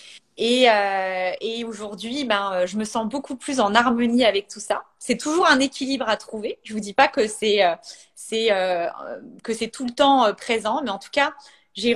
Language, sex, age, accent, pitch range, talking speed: French, female, 30-49, French, 215-275 Hz, 200 wpm